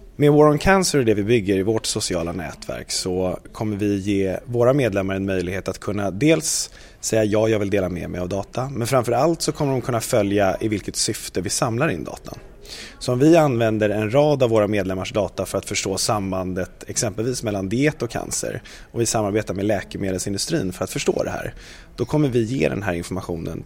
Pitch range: 95-125 Hz